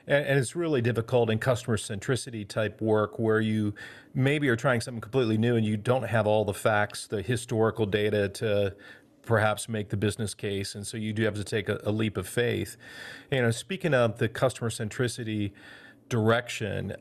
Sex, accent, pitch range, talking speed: male, American, 110-125 Hz, 190 wpm